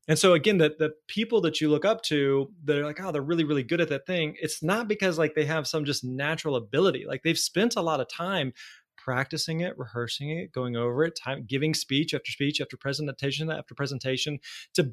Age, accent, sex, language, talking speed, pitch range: 20-39, American, male, English, 225 wpm, 135-165 Hz